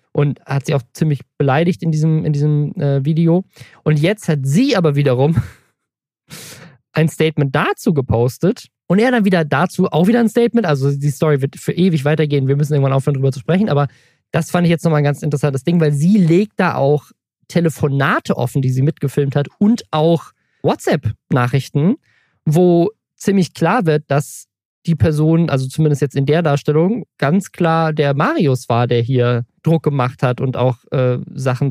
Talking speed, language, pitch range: 180 wpm, German, 130-165 Hz